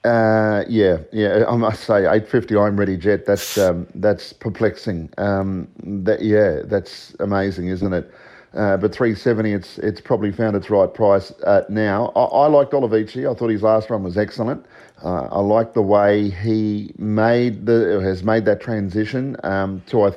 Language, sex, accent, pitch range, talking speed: English, male, Australian, 100-115 Hz, 175 wpm